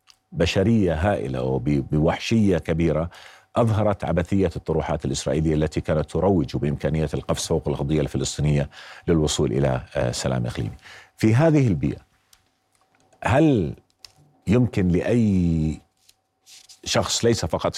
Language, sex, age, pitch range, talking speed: Arabic, male, 40-59, 75-95 Hz, 100 wpm